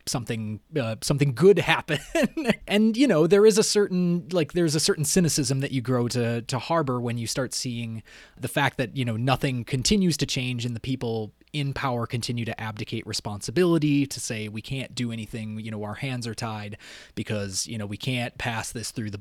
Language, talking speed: English, 205 wpm